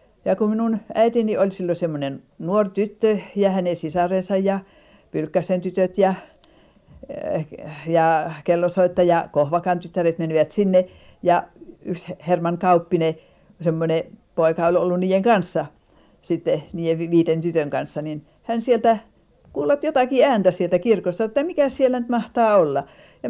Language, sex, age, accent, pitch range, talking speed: Finnish, female, 50-69, native, 185-220 Hz, 135 wpm